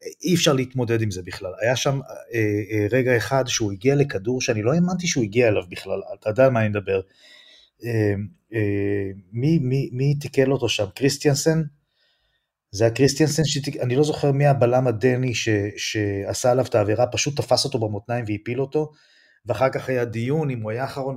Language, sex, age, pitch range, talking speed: Hebrew, male, 30-49, 110-145 Hz, 185 wpm